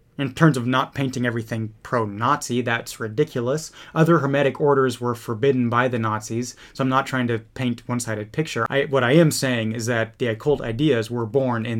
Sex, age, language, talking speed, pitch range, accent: male, 30-49, English, 190 wpm, 125-175 Hz, American